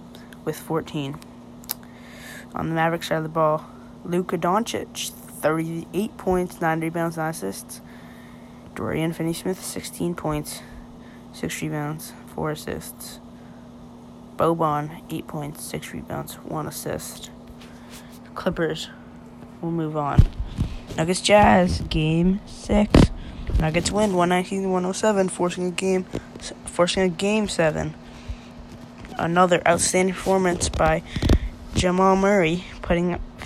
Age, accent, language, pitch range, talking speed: 20-39, American, English, 110-175 Hz, 105 wpm